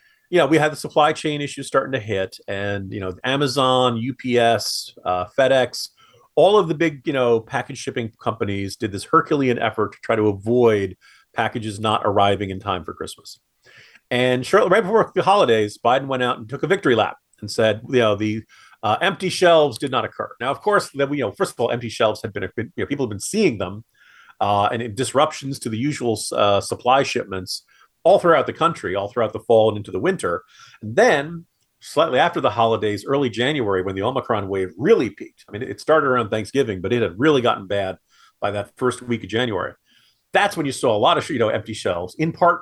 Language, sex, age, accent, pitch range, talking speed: English, male, 40-59, American, 110-165 Hz, 215 wpm